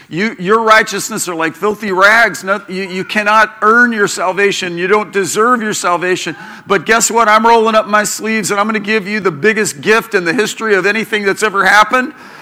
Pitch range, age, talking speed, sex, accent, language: 190-230 Hz, 50-69, 200 wpm, male, American, English